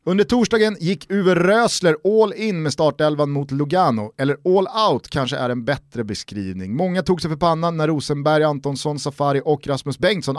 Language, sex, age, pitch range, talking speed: Swedish, male, 30-49, 130-180 Hz, 180 wpm